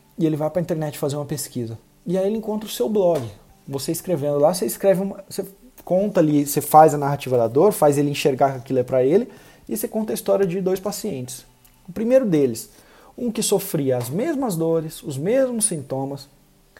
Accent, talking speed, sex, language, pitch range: Brazilian, 210 wpm, male, Portuguese, 140-190 Hz